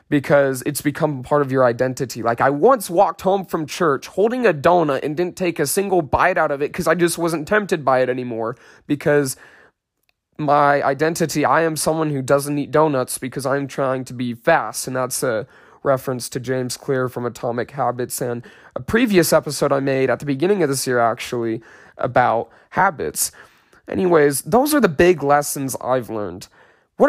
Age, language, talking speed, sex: 20-39, English, 185 wpm, male